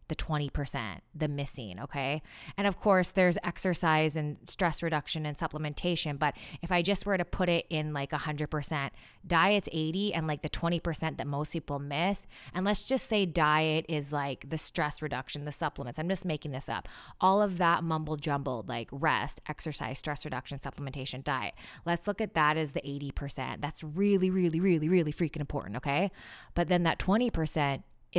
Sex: female